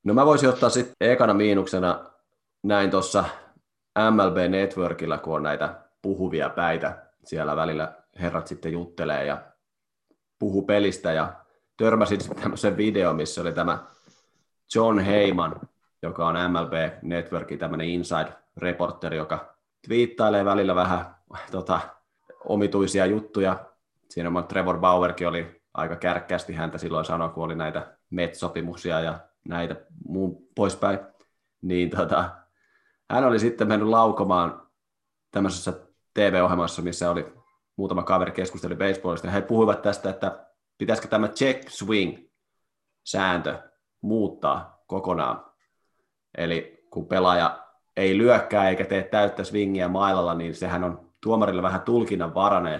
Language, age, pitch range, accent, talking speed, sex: Finnish, 30-49, 85-100 Hz, native, 125 wpm, male